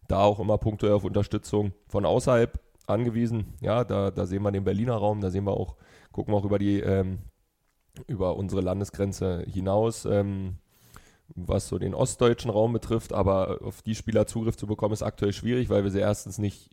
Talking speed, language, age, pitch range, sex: 185 wpm, German, 20-39, 100-115 Hz, male